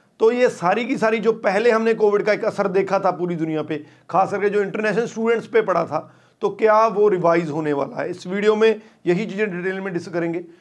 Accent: native